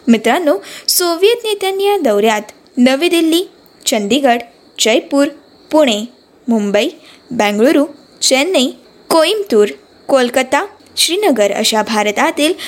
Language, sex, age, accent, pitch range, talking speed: Marathi, female, 20-39, native, 245-355 Hz, 85 wpm